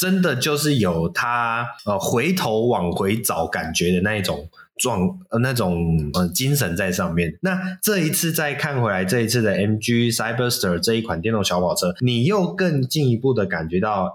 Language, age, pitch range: Chinese, 20-39, 95-145 Hz